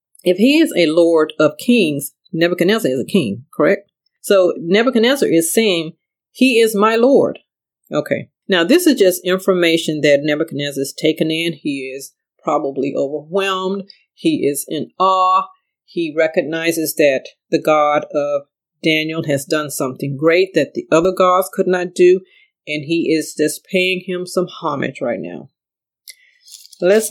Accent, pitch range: American, 150-200 Hz